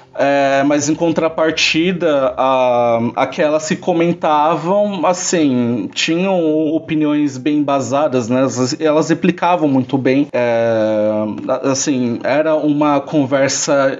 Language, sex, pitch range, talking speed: Portuguese, male, 130-170 Hz, 105 wpm